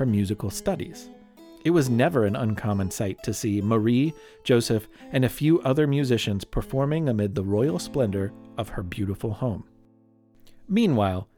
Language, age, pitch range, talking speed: English, 30-49, 110-170 Hz, 140 wpm